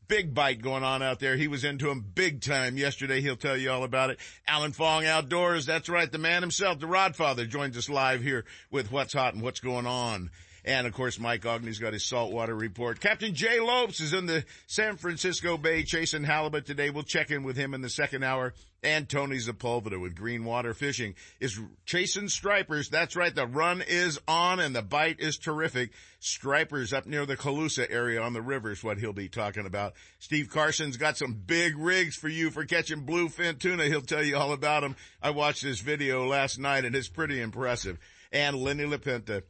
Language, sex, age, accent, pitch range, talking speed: English, male, 50-69, American, 125-165 Hz, 205 wpm